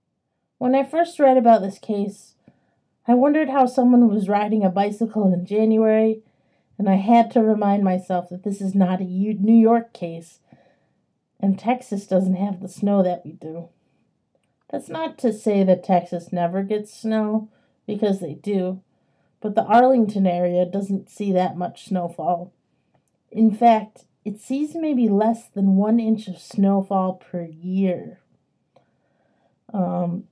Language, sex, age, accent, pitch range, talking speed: English, female, 30-49, American, 190-230 Hz, 150 wpm